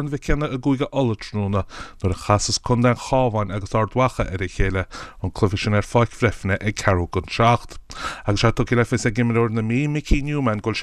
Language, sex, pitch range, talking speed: English, male, 100-120 Hz, 100 wpm